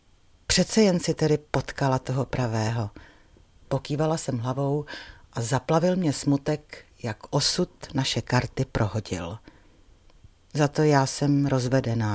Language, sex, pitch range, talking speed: Czech, female, 115-160 Hz, 120 wpm